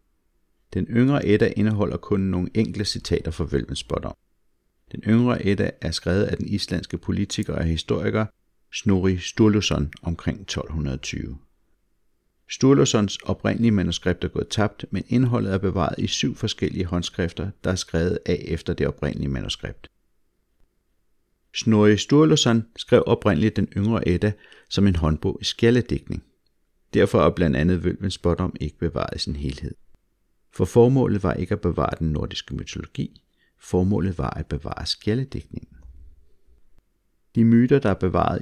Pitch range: 85-105 Hz